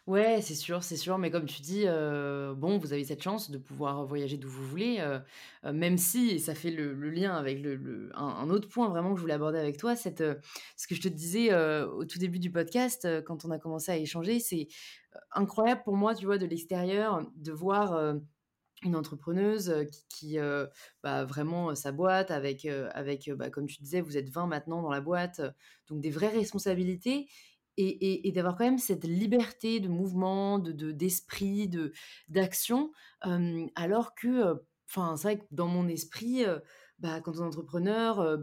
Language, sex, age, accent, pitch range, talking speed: French, female, 20-39, French, 155-205 Hz, 215 wpm